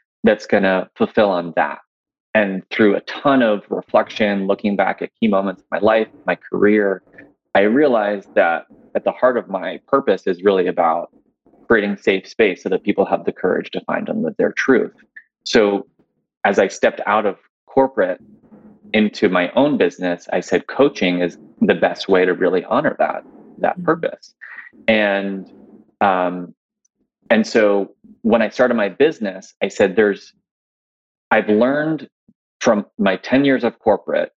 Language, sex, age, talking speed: English, male, 20-39, 160 wpm